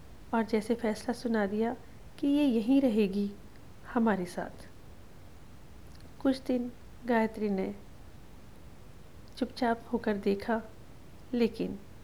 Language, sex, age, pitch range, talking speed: Hindi, female, 40-59, 200-245 Hz, 95 wpm